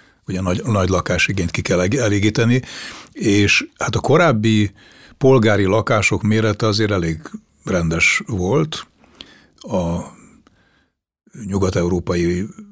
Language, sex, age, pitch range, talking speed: Hungarian, male, 60-79, 90-110 Hz, 100 wpm